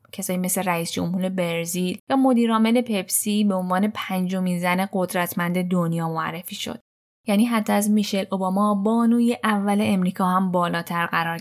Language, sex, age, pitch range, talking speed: Persian, female, 10-29, 185-235 Hz, 145 wpm